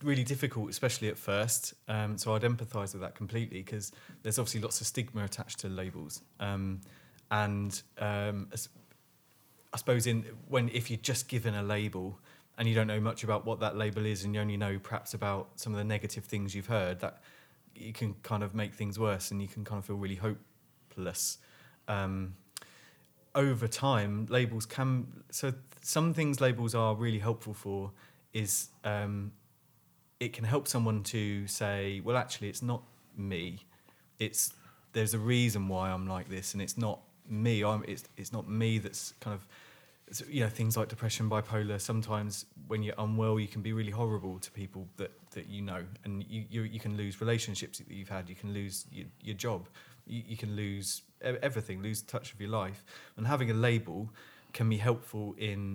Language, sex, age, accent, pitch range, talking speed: English, male, 20-39, British, 100-115 Hz, 190 wpm